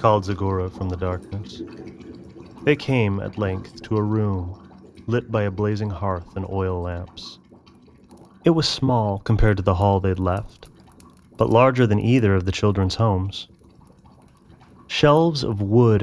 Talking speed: 150 wpm